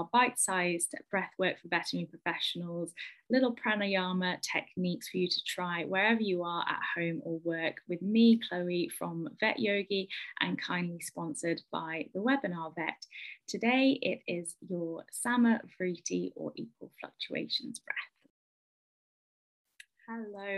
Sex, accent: female, British